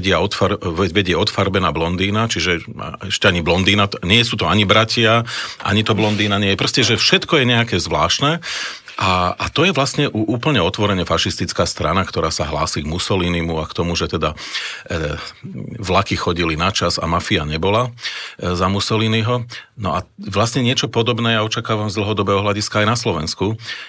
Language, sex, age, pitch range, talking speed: Slovak, male, 40-59, 85-110 Hz, 155 wpm